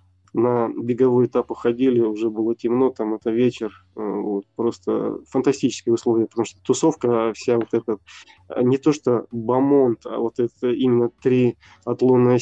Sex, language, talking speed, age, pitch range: male, Russian, 145 wpm, 20-39, 115-125 Hz